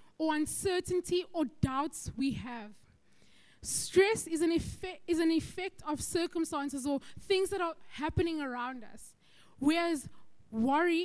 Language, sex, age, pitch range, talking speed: English, female, 20-39, 295-365 Hz, 130 wpm